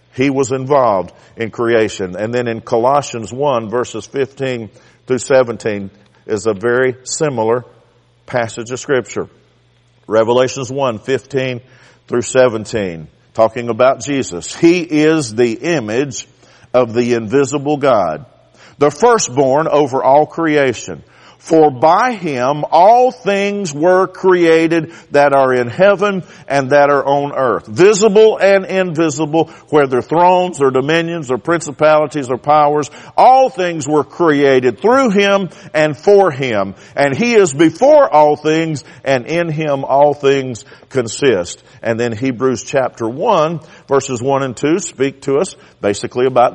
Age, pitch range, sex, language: 50-69, 125-160 Hz, male, English